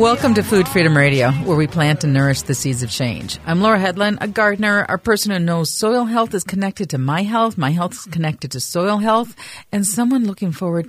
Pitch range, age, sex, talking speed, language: 135-195 Hz, 40-59, female, 225 wpm, English